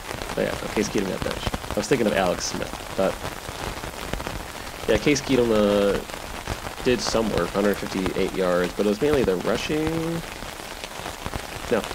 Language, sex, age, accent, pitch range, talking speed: English, male, 30-49, American, 100-125 Hz, 145 wpm